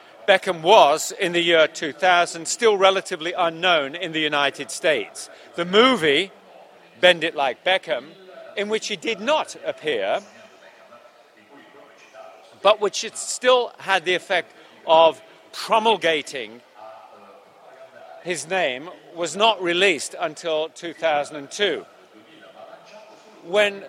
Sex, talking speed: male, 105 wpm